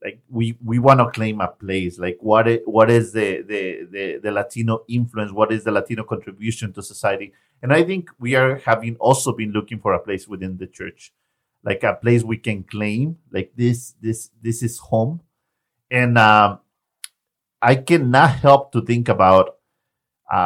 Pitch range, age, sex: 110-130 Hz, 50-69, male